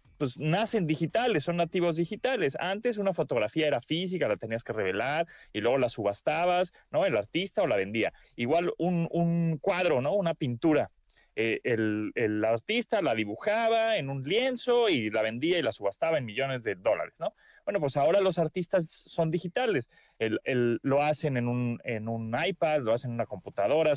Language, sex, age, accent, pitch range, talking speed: Spanish, male, 30-49, Mexican, 125-175 Hz, 185 wpm